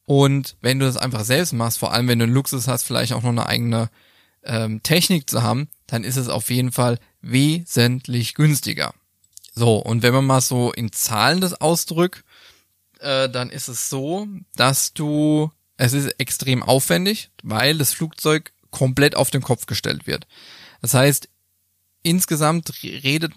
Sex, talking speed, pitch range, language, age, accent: male, 165 wpm, 120-150 Hz, German, 20-39, German